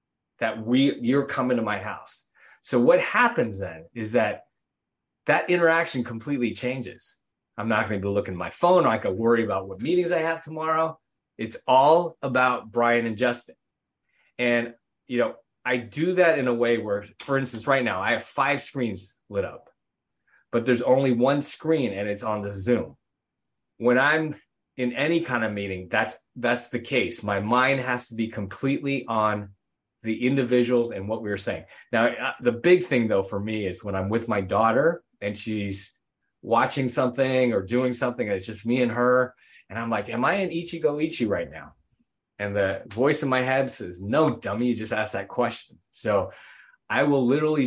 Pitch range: 110-135 Hz